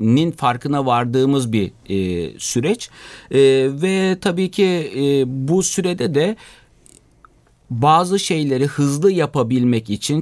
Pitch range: 120-160 Hz